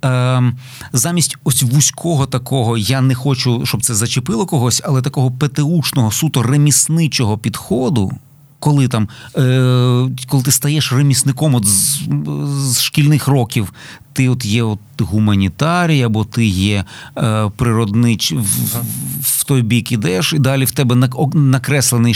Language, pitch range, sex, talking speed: Ukrainian, 120-145 Hz, male, 125 wpm